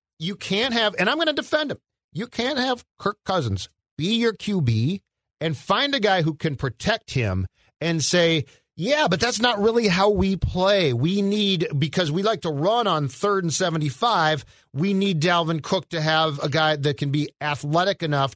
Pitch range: 135-190 Hz